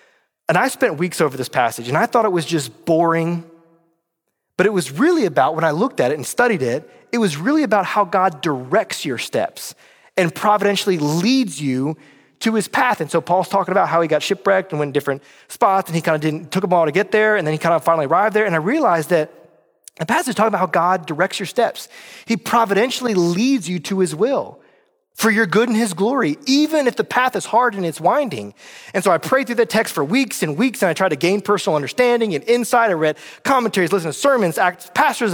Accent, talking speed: American, 235 wpm